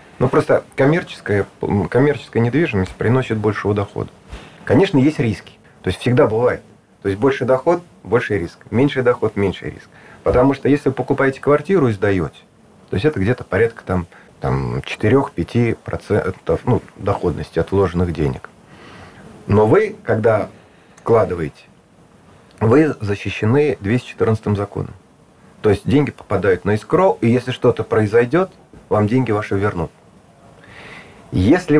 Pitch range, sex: 100-125 Hz, male